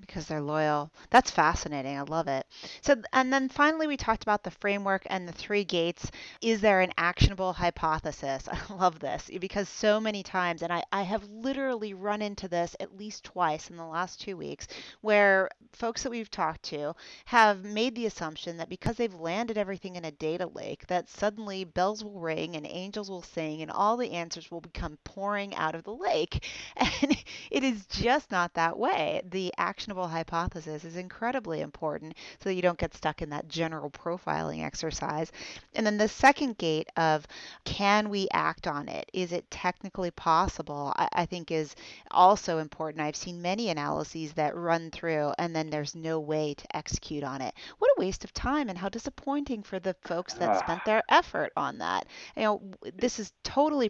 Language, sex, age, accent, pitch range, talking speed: English, female, 30-49, American, 165-210 Hz, 190 wpm